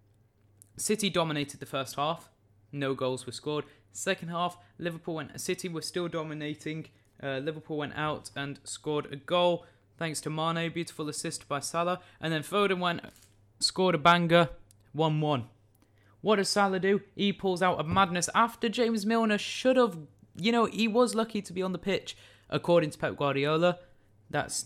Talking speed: 170 wpm